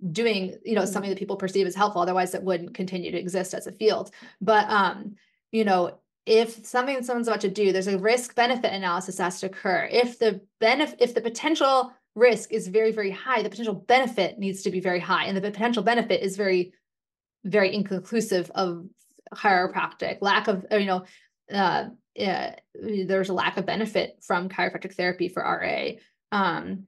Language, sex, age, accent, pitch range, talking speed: English, female, 20-39, American, 190-235 Hz, 185 wpm